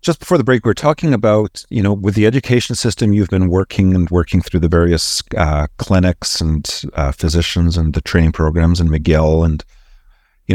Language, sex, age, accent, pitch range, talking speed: English, male, 50-69, American, 85-100 Hz, 200 wpm